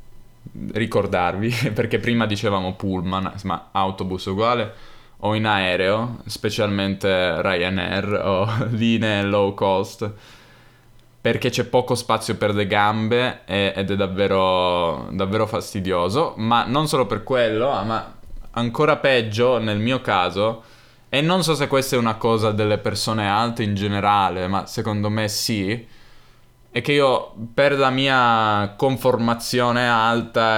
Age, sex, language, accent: 10-29, male, Italian, native